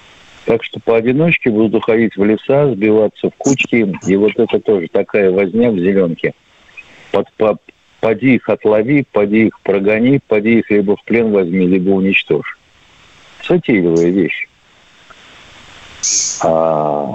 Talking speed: 125 wpm